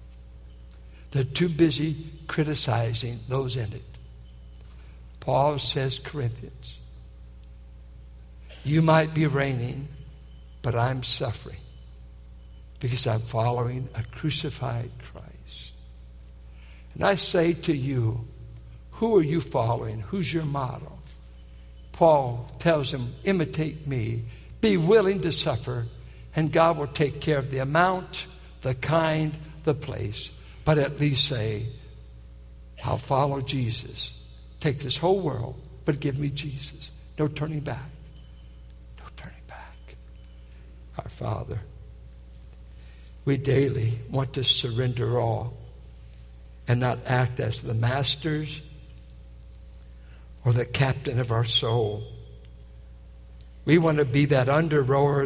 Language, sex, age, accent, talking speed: English, male, 60-79, American, 115 wpm